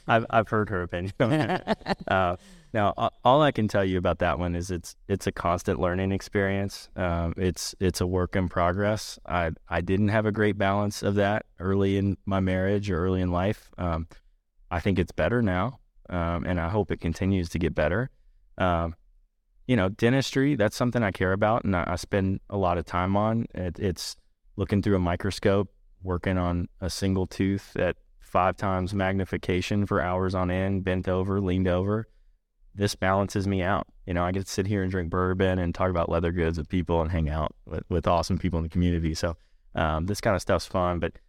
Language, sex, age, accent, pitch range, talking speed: English, male, 20-39, American, 85-100 Hz, 205 wpm